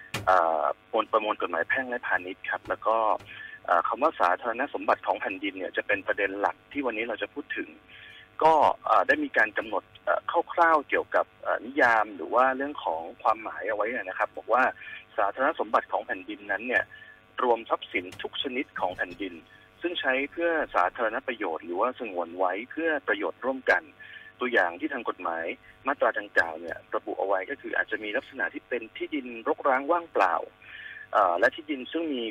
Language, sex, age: Thai, male, 30-49